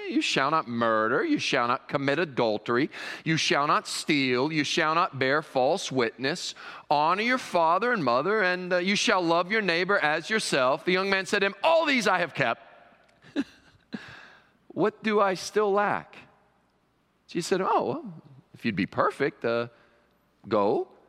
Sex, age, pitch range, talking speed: male, 40-59, 130-210 Hz, 165 wpm